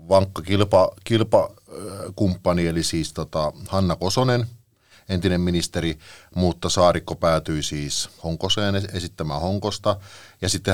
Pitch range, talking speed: 80-95 Hz, 105 wpm